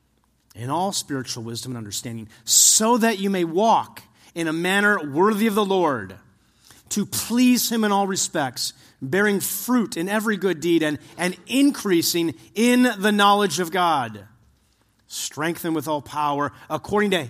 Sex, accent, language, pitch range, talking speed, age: male, American, English, 130-205 Hz, 155 wpm, 40-59